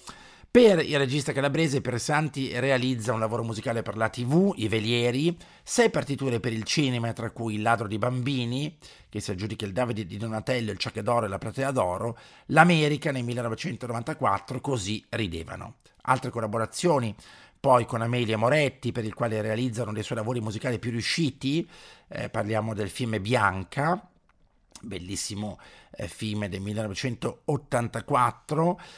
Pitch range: 110-135 Hz